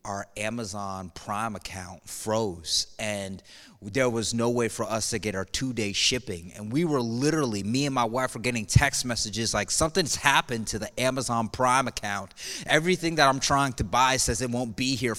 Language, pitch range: English, 115-145 Hz